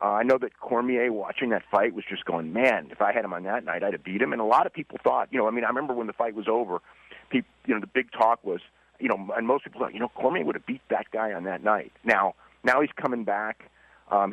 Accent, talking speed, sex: American, 295 wpm, male